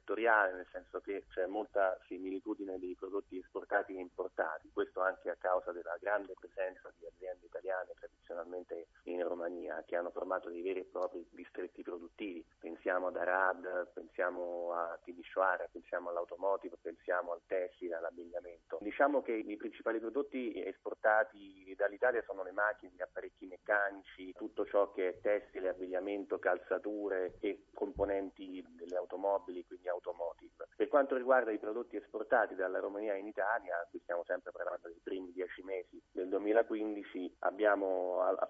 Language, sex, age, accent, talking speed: Italian, male, 30-49, native, 145 wpm